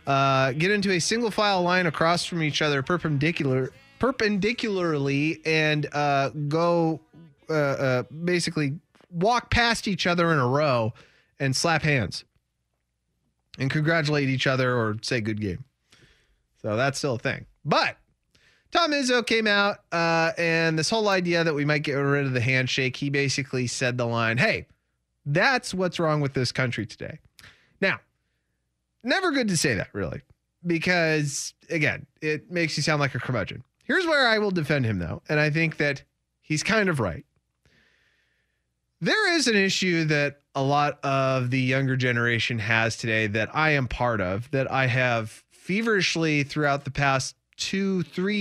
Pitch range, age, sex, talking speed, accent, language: 125-170 Hz, 30-49, male, 160 wpm, American, English